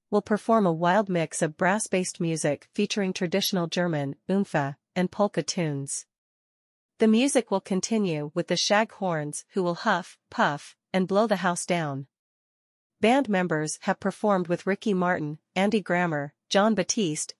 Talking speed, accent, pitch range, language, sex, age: 150 wpm, American, 165-200 Hz, English, female, 40-59